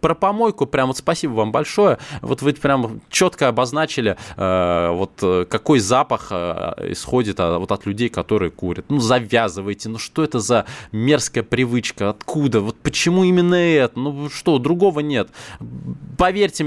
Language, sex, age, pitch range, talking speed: Russian, male, 20-39, 110-155 Hz, 150 wpm